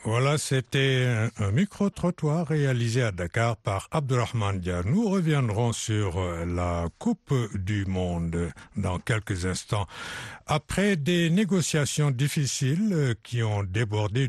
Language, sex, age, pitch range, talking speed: French, male, 60-79, 105-145 Hz, 110 wpm